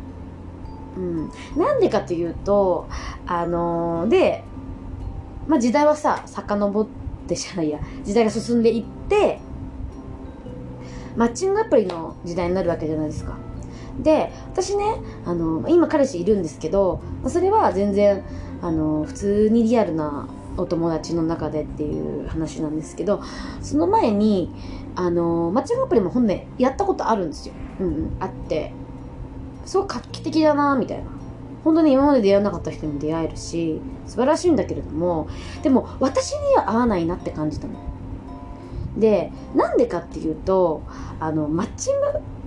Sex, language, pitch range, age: female, Japanese, 150-250 Hz, 20-39